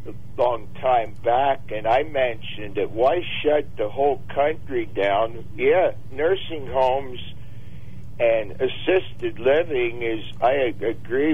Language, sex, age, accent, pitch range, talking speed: English, male, 60-79, American, 110-130 Hz, 120 wpm